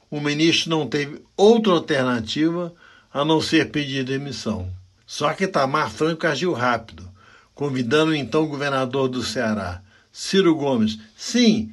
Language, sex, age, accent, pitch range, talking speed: Portuguese, male, 60-79, Brazilian, 115-160 Hz, 135 wpm